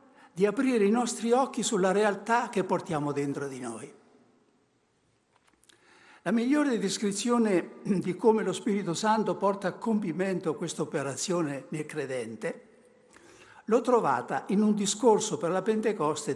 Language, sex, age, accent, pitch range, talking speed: Italian, male, 60-79, native, 180-240 Hz, 130 wpm